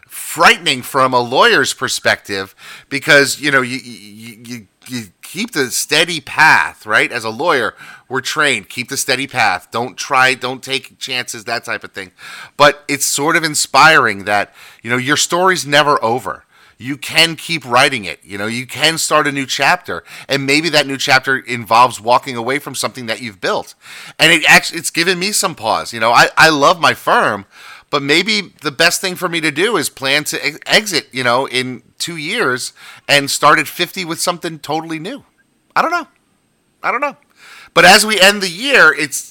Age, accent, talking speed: 30-49, American, 195 wpm